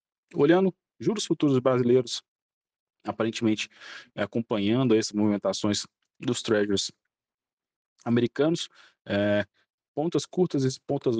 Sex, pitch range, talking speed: male, 100-120 Hz, 90 wpm